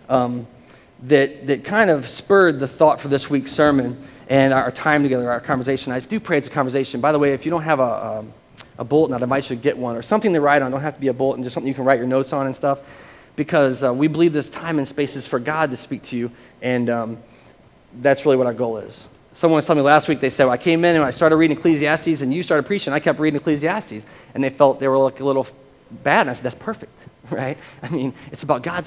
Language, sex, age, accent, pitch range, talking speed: English, male, 30-49, American, 130-155 Hz, 270 wpm